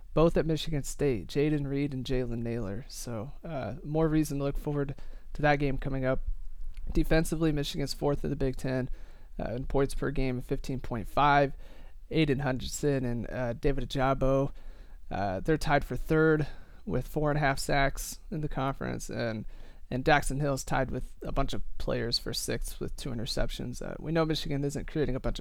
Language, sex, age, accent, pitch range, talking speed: English, male, 30-49, American, 125-160 Hz, 180 wpm